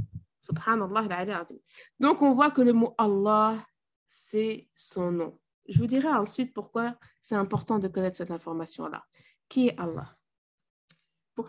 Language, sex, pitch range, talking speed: French, female, 195-275 Hz, 130 wpm